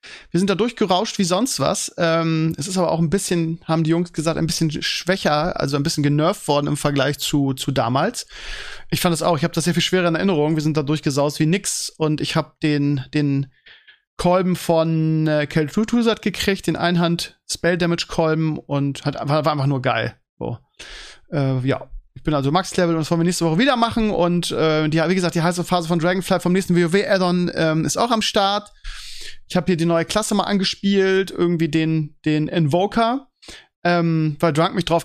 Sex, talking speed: male, 205 wpm